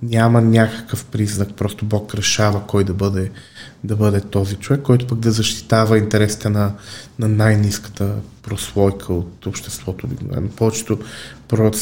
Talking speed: 135 wpm